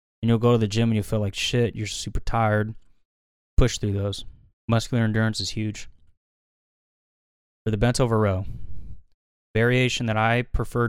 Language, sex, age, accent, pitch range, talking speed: English, male, 20-39, American, 95-120 Hz, 165 wpm